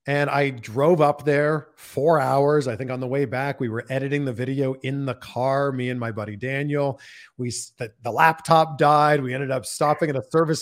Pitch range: 115-160 Hz